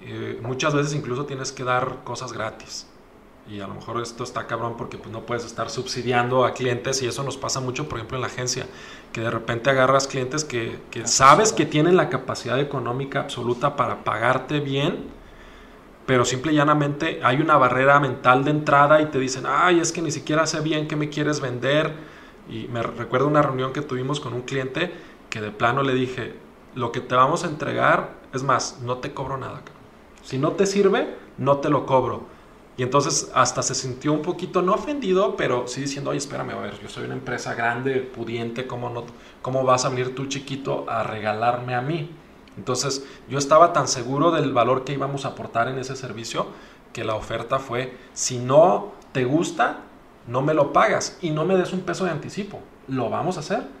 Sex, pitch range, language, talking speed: male, 125-145 Hz, Spanish, 205 wpm